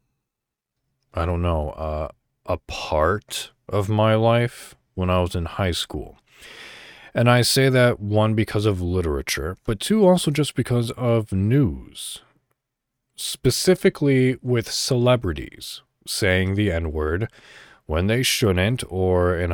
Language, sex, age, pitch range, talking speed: English, male, 40-59, 90-125 Hz, 125 wpm